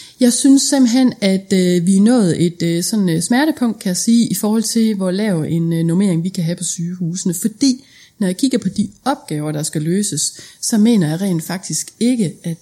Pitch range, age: 165-210 Hz, 30-49